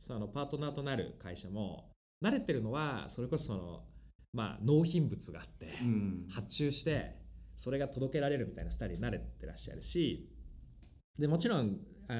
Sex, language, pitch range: male, Japanese, 100-155 Hz